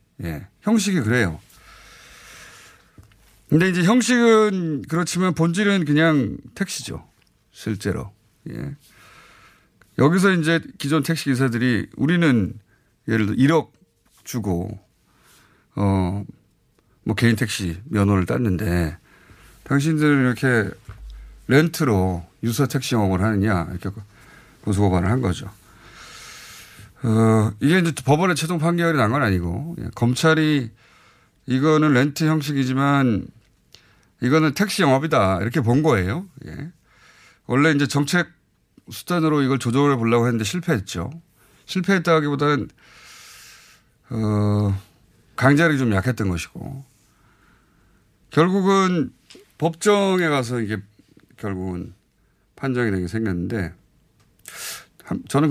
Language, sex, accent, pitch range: Korean, male, native, 105-155 Hz